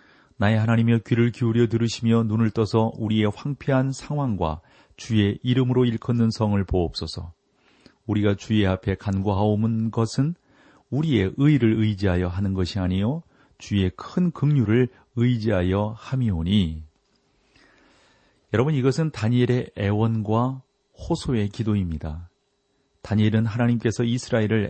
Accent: native